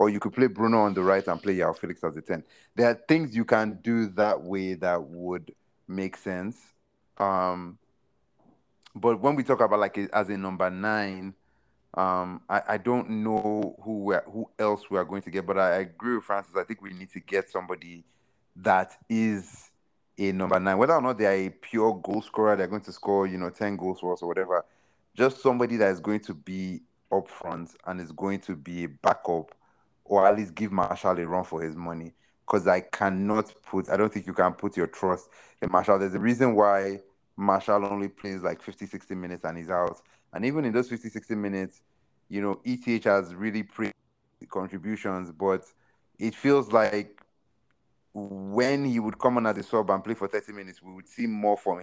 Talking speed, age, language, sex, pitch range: 205 wpm, 30-49, English, male, 90-110 Hz